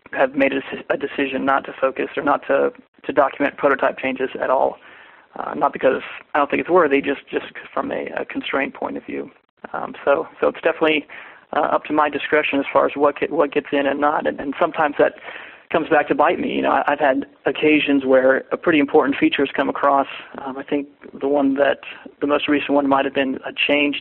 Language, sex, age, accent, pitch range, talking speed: English, male, 30-49, American, 140-150 Hz, 225 wpm